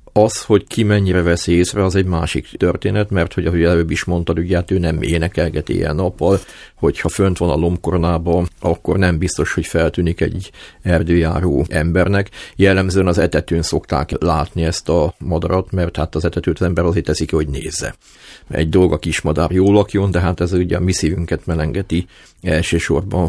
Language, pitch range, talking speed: Hungarian, 85-95 Hz, 175 wpm